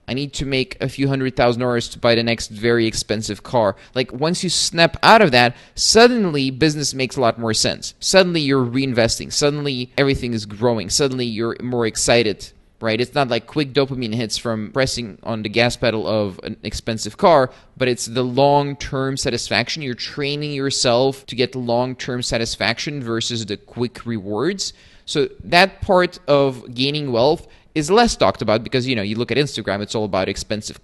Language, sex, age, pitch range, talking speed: English, male, 20-39, 115-140 Hz, 185 wpm